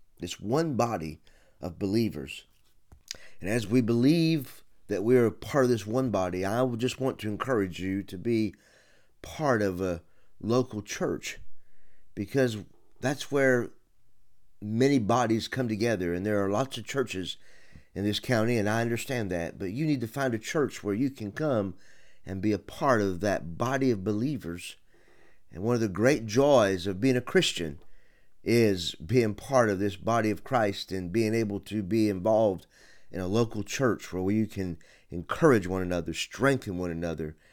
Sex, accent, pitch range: male, American, 90-120 Hz